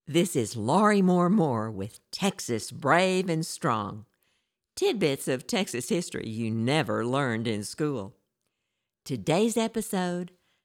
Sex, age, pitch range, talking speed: female, 60-79, 125-195 Hz, 115 wpm